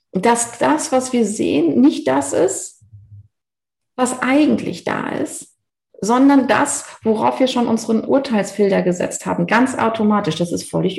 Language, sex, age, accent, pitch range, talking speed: German, female, 40-59, German, 180-260 Hz, 140 wpm